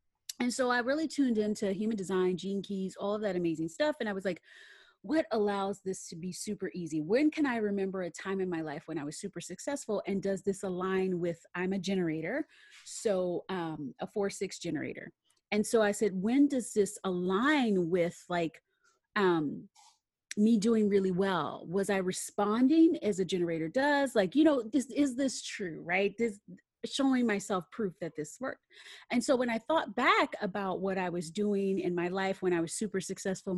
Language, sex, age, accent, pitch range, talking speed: English, female, 30-49, American, 185-230 Hz, 195 wpm